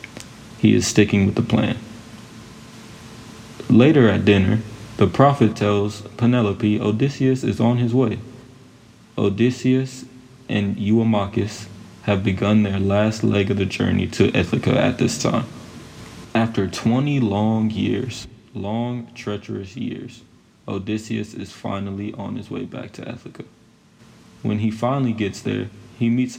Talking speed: 130 wpm